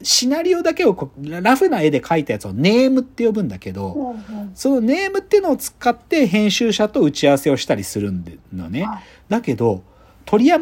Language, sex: Japanese, male